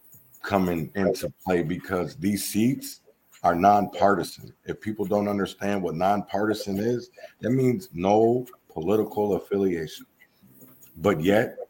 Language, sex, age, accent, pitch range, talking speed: English, male, 50-69, American, 90-105 Hz, 115 wpm